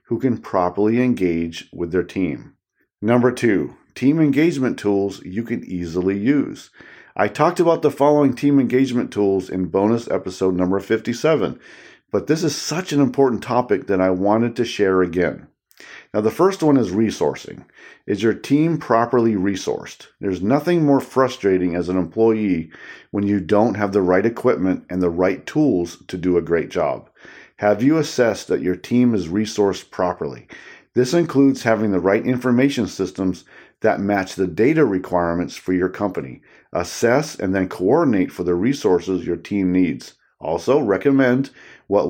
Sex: male